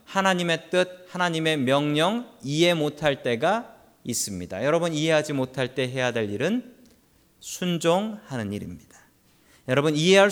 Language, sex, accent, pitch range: Korean, male, native, 115-180 Hz